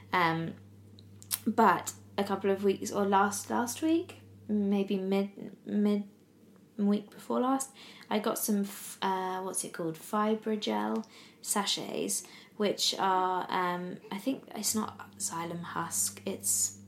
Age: 20-39